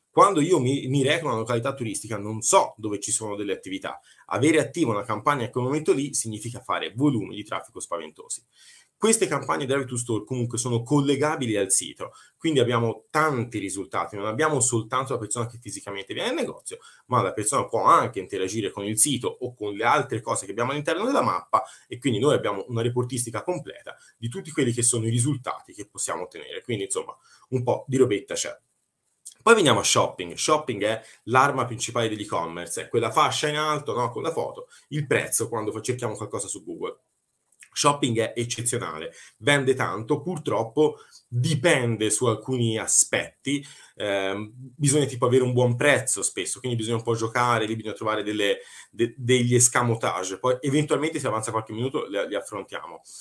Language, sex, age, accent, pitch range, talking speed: Italian, male, 30-49, native, 110-145 Hz, 185 wpm